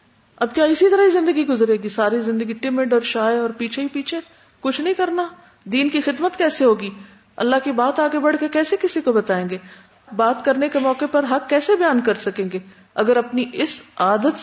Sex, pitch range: female, 195-300 Hz